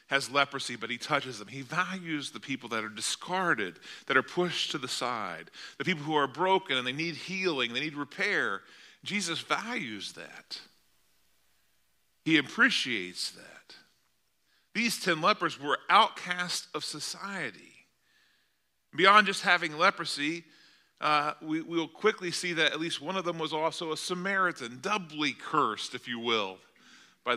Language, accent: English, American